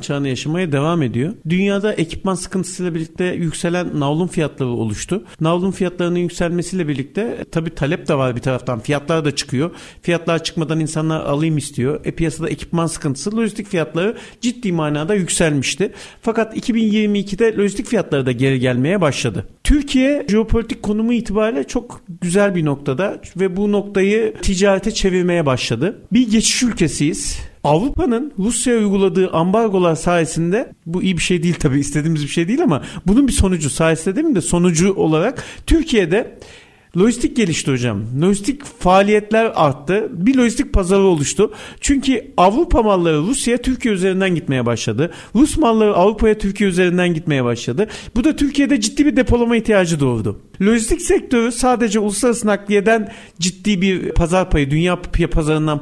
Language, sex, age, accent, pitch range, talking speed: Turkish, male, 50-69, native, 155-220 Hz, 145 wpm